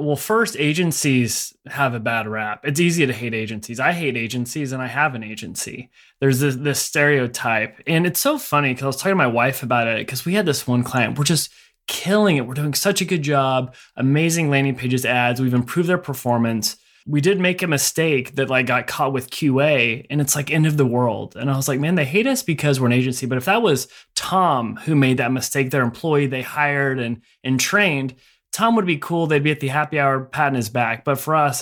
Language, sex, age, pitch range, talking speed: English, male, 20-39, 125-150 Hz, 235 wpm